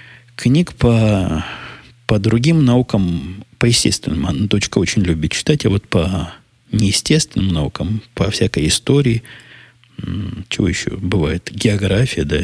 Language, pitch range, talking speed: Russian, 90-115 Hz, 110 wpm